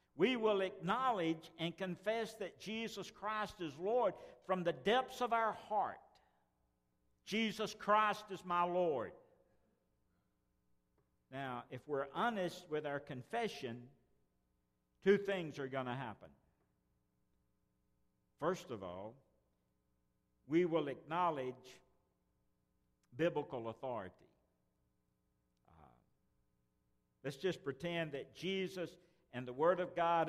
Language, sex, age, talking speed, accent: English, male, 60-79, 105 wpm, American